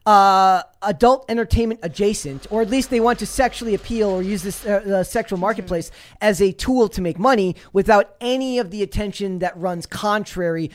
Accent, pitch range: American, 175-220 Hz